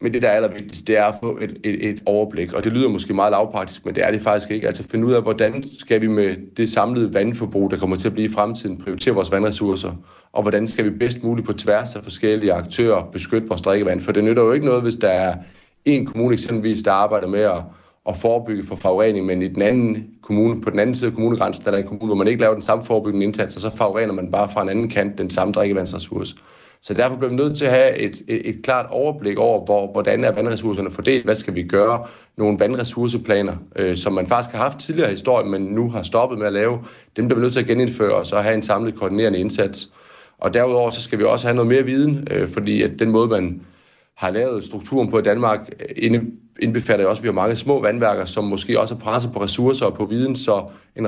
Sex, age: male, 30-49